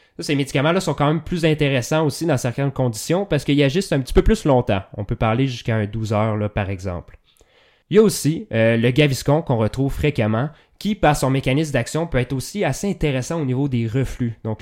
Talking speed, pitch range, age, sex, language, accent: 220 wpm, 115-150 Hz, 20-39, male, French, Canadian